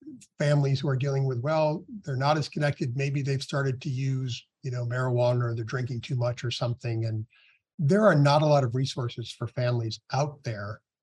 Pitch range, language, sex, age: 125-150 Hz, English, male, 50-69